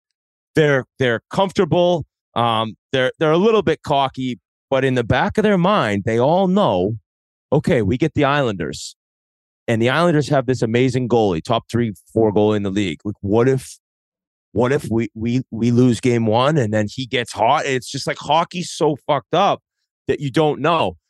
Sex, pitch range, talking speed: male, 120-155 Hz, 190 wpm